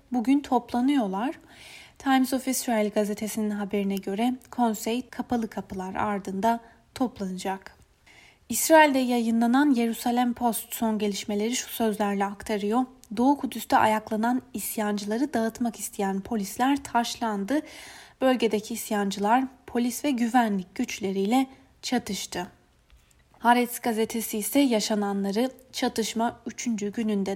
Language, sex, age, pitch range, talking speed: Turkish, female, 30-49, 205-250 Hz, 95 wpm